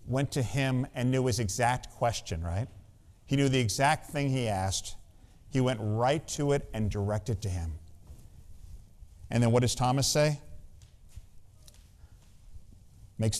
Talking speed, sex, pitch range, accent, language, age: 145 wpm, male, 100-135 Hz, American, English, 50-69